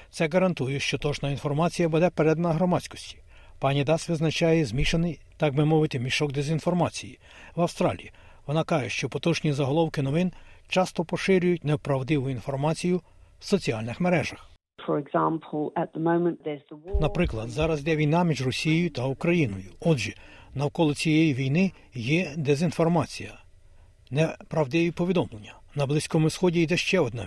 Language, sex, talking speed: Ukrainian, male, 120 wpm